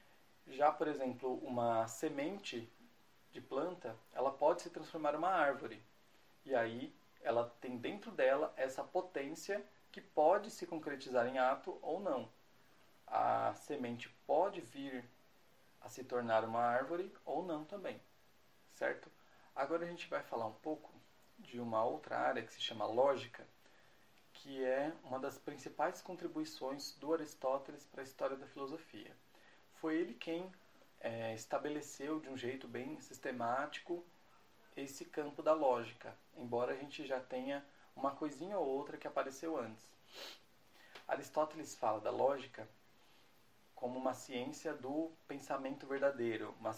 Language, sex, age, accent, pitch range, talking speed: Portuguese, male, 40-59, Brazilian, 125-155 Hz, 135 wpm